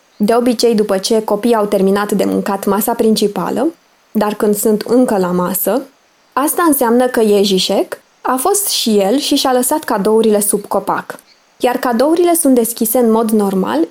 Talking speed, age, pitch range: 170 wpm, 20-39, 210-265 Hz